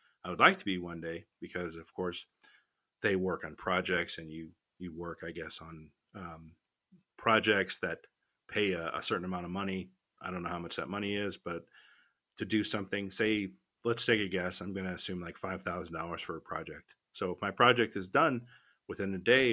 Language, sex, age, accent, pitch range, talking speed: English, male, 40-59, American, 90-100 Hz, 205 wpm